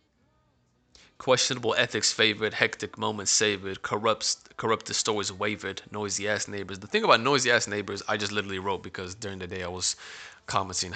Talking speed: 165 wpm